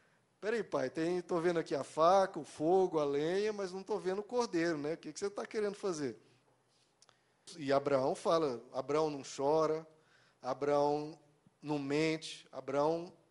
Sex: male